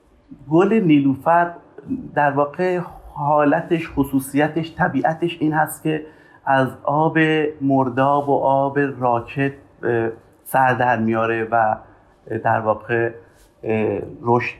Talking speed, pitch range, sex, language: 90 wpm, 120-150 Hz, male, Persian